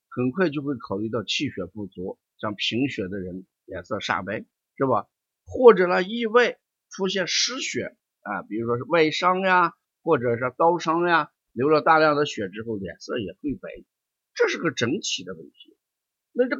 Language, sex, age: Chinese, male, 50-69